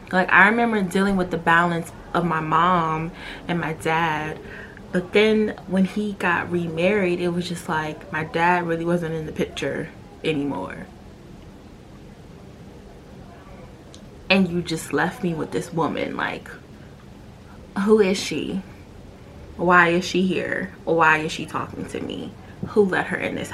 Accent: American